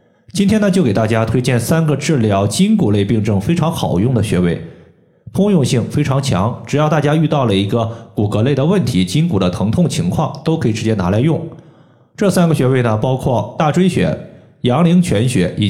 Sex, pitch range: male, 110-160 Hz